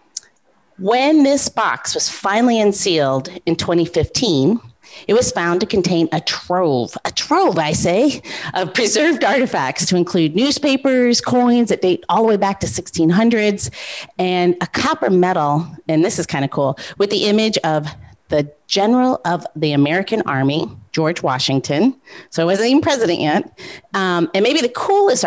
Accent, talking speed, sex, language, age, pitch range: American, 160 wpm, female, English, 40-59, 165-240 Hz